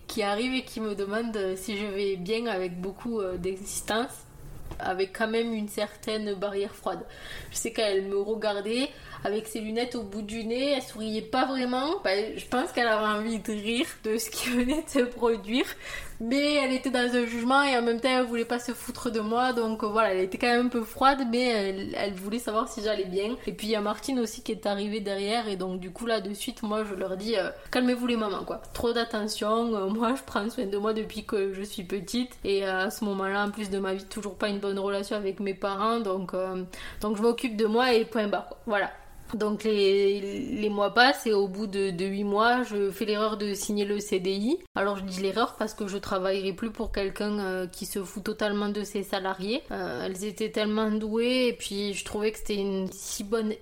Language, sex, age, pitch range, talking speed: French, female, 20-39, 200-235 Hz, 235 wpm